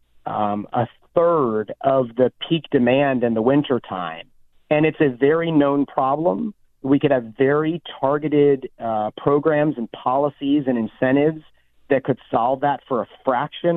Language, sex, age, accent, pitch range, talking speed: English, male, 30-49, American, 115-140 Hz, 155 wpm